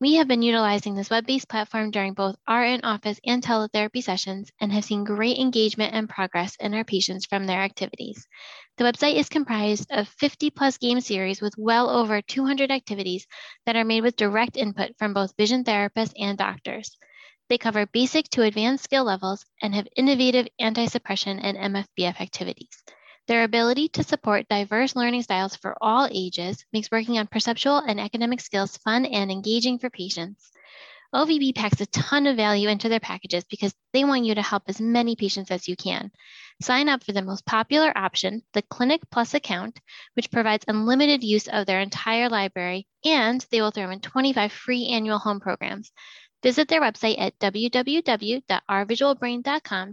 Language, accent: English, American